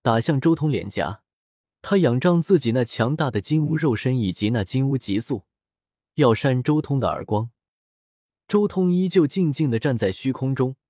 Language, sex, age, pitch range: Chinese, male, 20-39, 105-160 Hz